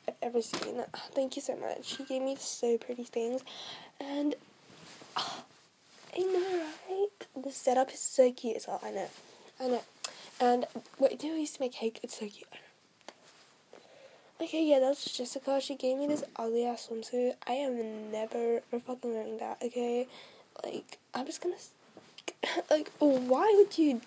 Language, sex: English, female